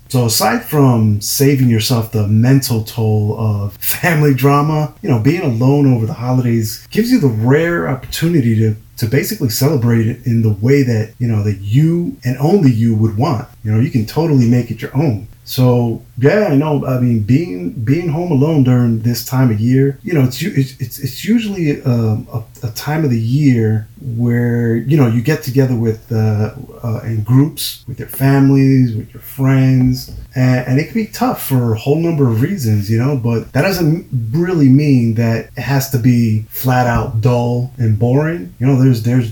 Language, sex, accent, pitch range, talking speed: English, male, American, 115-135 Hz, 195 wpm